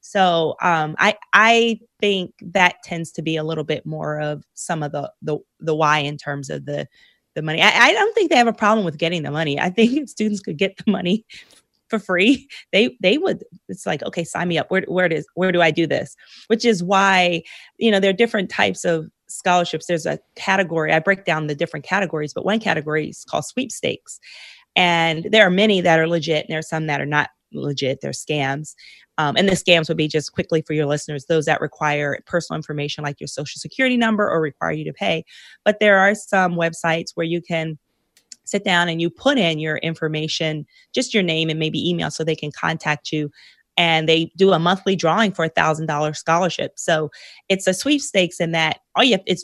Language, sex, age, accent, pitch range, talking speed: English, female, 30-49, American, 155-195 Hz, 220 wpm